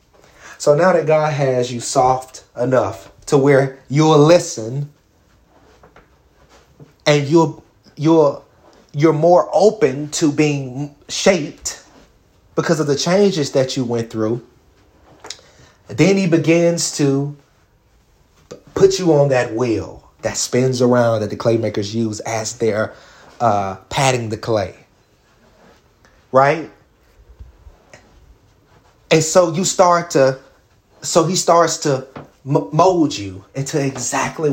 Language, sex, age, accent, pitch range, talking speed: English, male, 30-49, American, 115-155 Hz, 115 wpm